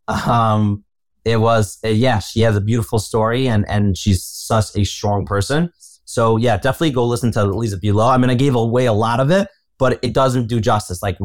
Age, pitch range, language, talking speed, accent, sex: 30-49, 110-140 Hz, English, 220 wpm, American, male